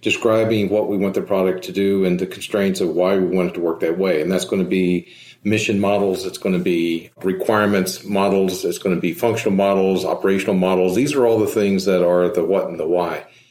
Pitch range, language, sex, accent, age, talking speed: 95-115 Hz, English, male, American, 50-69, 235 wpm